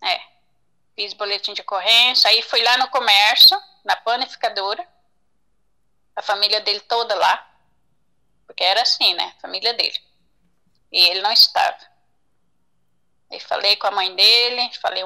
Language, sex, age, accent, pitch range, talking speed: Portuguese, female, 10-29, Brazilian, 210-300 Hz, 135 wpm